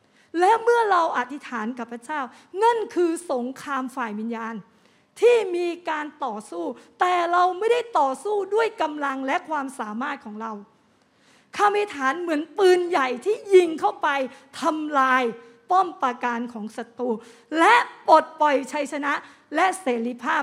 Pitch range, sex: 230-310 Hz, female